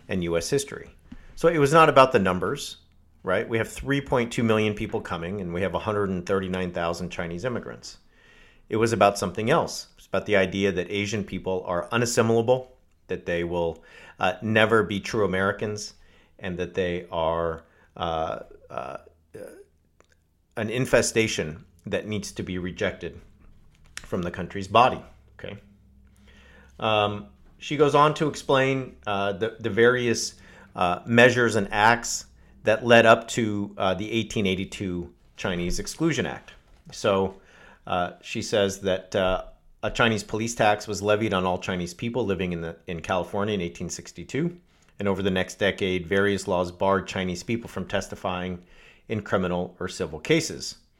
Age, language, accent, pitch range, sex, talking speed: 40-59, English, American, 90-115 Hz, male, 145 wpm